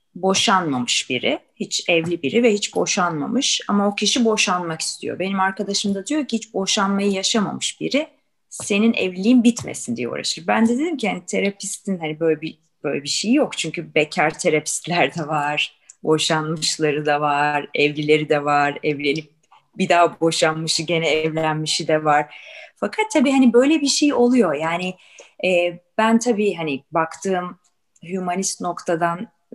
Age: 30-49